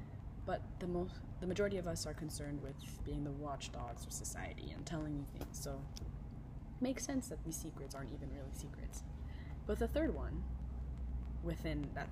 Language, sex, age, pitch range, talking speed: English, female, 20-39, 120-155 Hz, 175 wpm